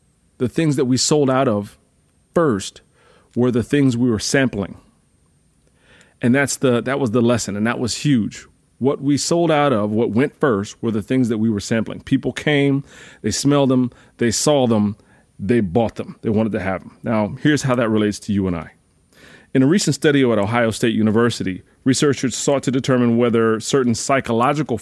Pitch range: 105-130 Hz